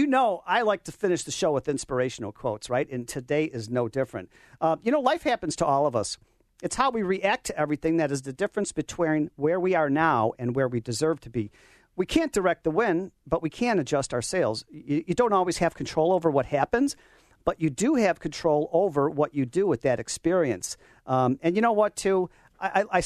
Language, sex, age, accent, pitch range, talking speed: English, male, 50-69, American, 135-175 Hz, 230 wpm